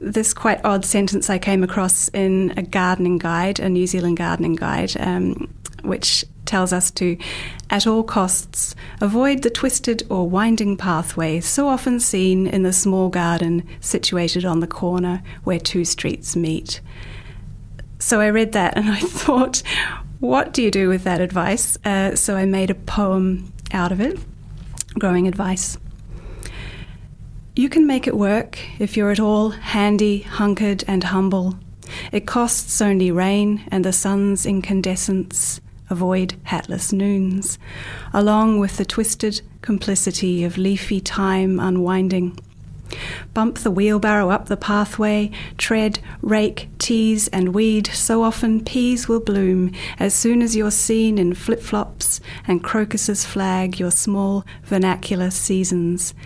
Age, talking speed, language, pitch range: 30-49, 140 wpm, English, 180-210 Hz